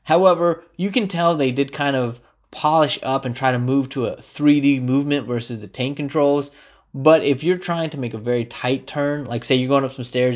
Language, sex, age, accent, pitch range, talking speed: English, male, 20-39, American, 120-150 Hz, 225 wpm